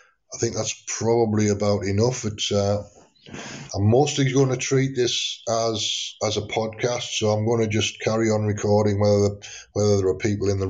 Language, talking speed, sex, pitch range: English, 185 wpm, male, 100-120 Hz